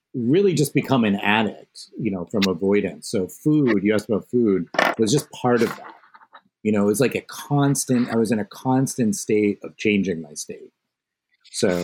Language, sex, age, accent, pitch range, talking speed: English, male, 30-49, American, 100-140 Hz, 195 wpm